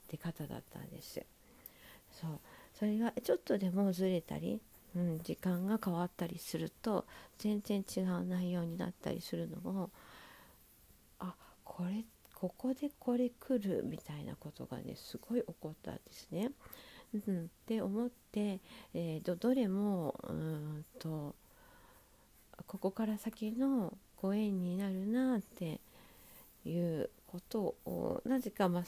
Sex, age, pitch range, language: female, 50-69, 170-230 Hz, Japanese